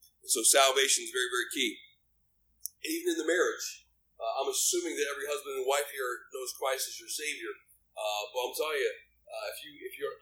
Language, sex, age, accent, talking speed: English, male, 40-59, American, 200 wpm